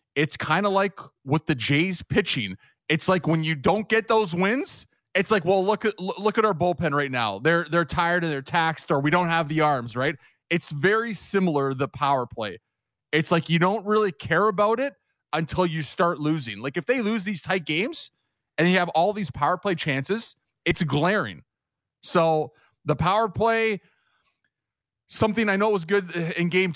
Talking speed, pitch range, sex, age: 195 wpm, 145-185 Hz, male, 20-39